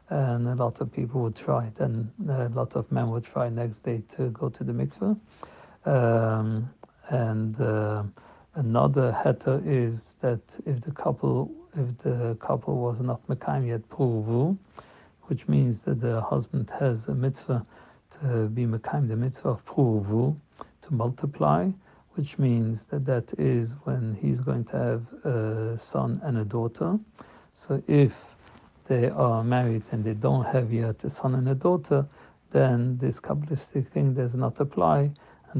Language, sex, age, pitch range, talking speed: English, male, 60-79, 115-135 Hz, 155 wpm